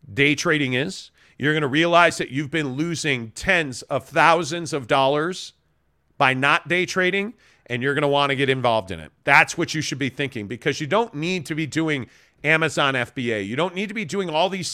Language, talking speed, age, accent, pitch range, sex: English, 215 wpm, 40-59, American, 140-175 Hz, male